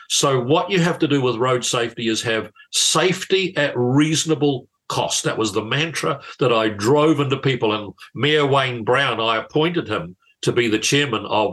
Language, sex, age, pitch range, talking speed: English, male, 50-69, 110-150 Hz, 185 wpm